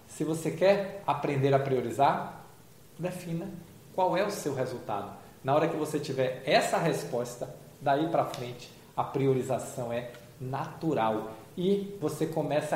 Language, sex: Portuguese, male